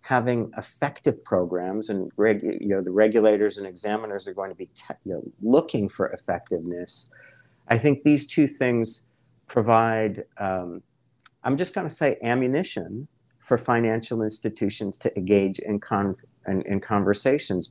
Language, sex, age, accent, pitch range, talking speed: English, male, 50-69, American, 95-125 Hz, 120 wpm